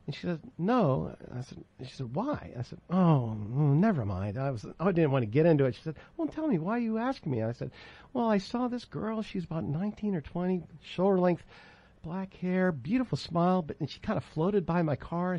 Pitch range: 125-175 Hz